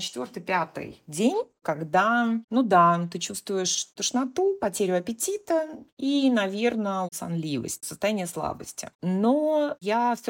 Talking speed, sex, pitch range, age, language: 110 wpm, female, 165-230 Hz, 30-49, Russian